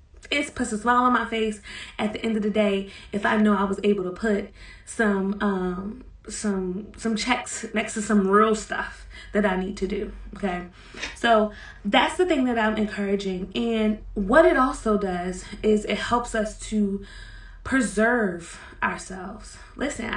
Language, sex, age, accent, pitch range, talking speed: English, female, 20-39, American, 195-235 Hz, 170 wpm